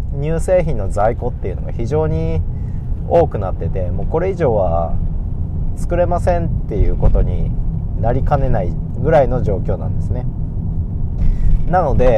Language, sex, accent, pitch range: Japanese, male, native, 85-125 Hz